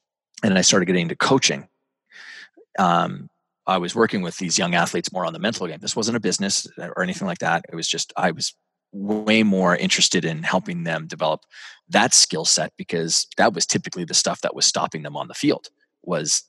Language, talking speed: English, 205 wpm